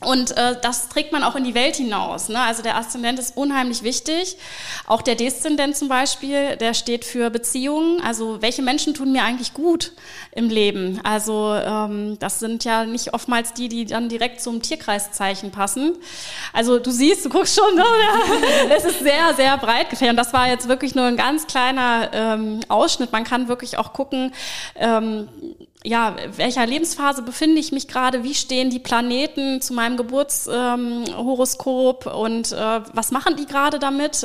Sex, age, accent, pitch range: female, 20-39, German, 230-280 Hz